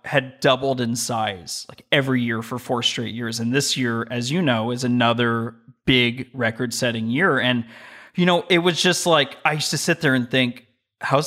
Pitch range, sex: 120-145 Hz, male